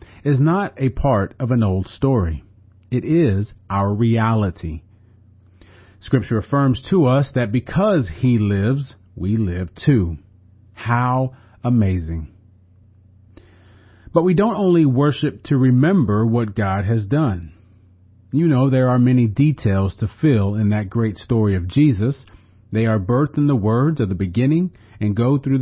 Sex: male